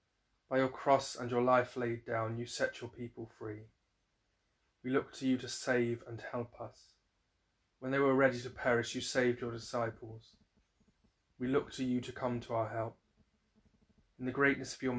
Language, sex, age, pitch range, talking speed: English, male, 20-39, 105-125 Hz, 185 wpm